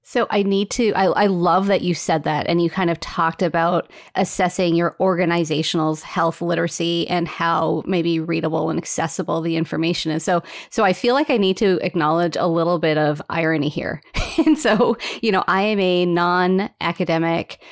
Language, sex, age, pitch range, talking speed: English, female, 30-49, 170-210 Hz, 185 wpm